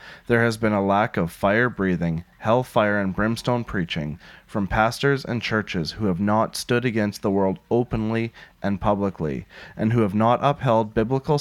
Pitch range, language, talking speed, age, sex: 95-125 Hz, English, 165 wpm, 30-49, male